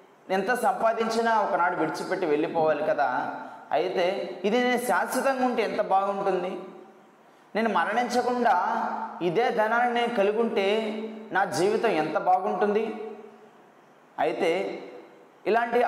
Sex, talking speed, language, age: male, 100 wpm, Telugu, 20-39